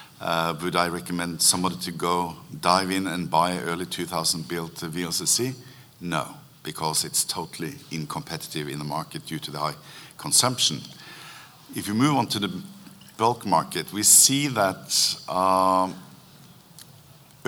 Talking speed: 140 wpm